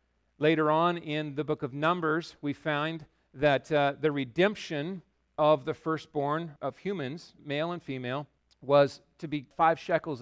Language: English